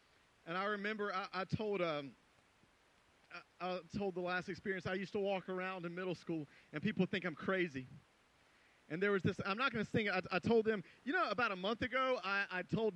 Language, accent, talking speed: English, American, 220 wpm